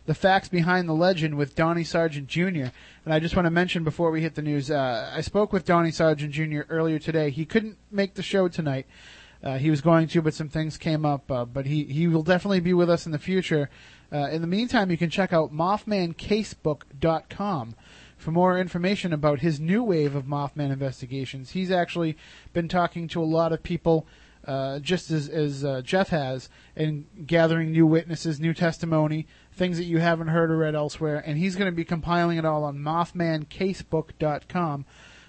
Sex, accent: male, American